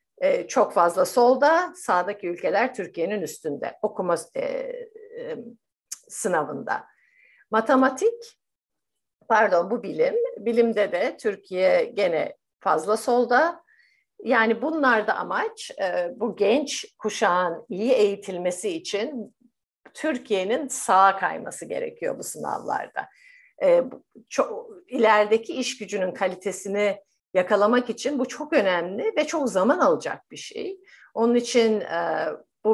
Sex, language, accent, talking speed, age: female, Turkish, native, 95 wpm, 60-79